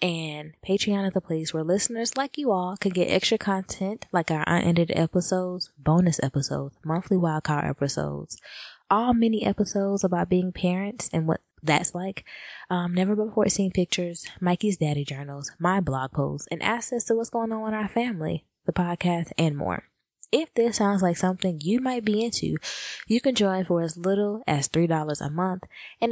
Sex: female